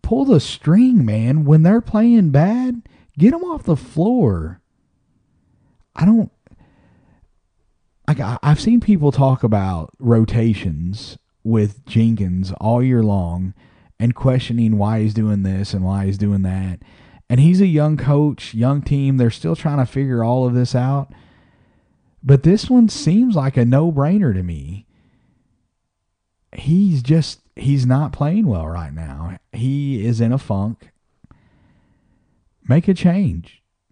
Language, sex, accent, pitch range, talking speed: English, male, American, 100-145 Hz, 140 wpm